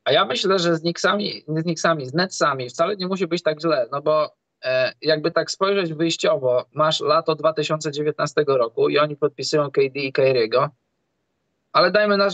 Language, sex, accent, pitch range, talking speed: Polish, male, native, 145-170 Hz, 170 wpm